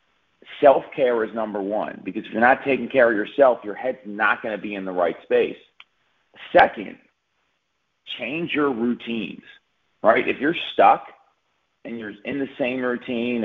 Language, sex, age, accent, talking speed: English, male, 40-59, American, 160 wpm